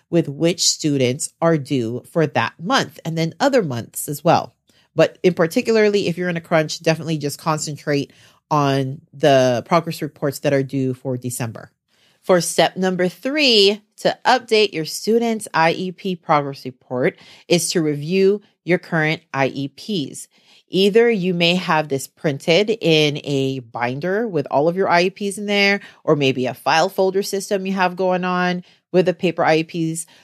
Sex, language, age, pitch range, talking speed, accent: female, English, 40-59, 140-185 Hz, 160 wpm, American